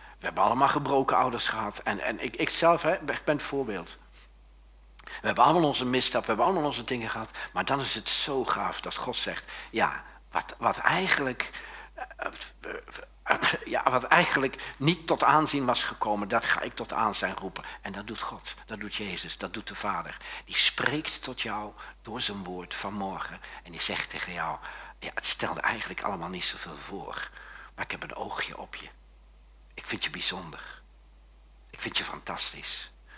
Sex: male